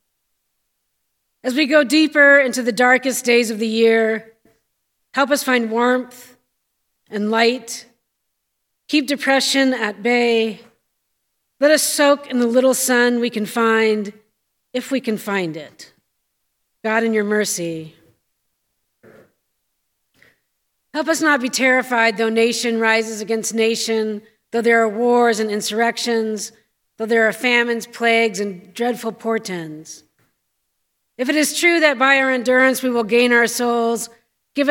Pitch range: 220-250 Hz